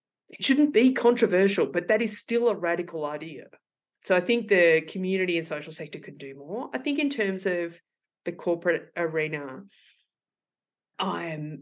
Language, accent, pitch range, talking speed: English, Australian, 150-190 Hz, 160 wpm